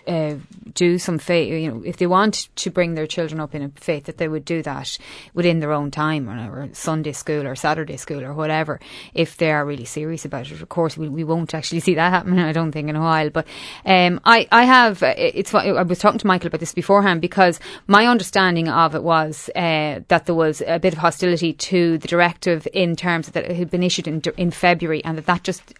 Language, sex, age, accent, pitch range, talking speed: English, female, 20-39, Irish, 150-175 Hz, 240 wpm